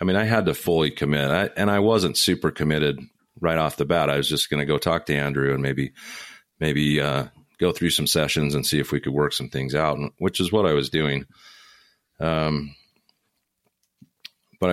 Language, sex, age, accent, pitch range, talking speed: English, male, 40-59, American, 70-80 Hz, 210 wpm